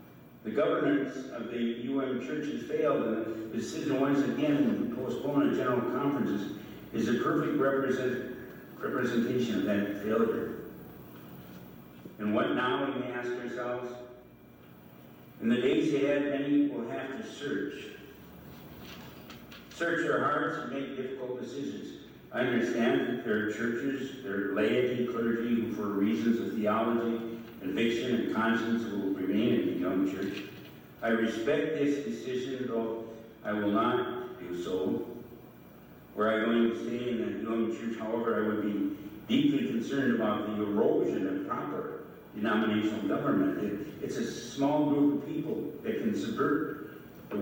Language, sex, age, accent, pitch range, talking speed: English, male, 60-79, American, 105-135 Hz, 145 wpm